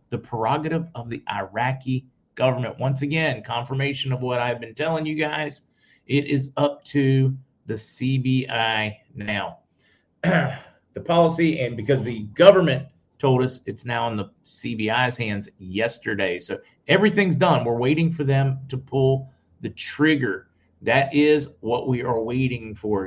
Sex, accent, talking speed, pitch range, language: male, American, 145 wpm, 115-140 Hz, English